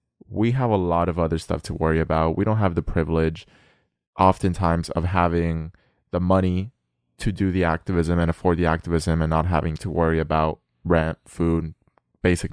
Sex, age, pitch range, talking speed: male, 20-39, 85-100 Hz, 175 wpm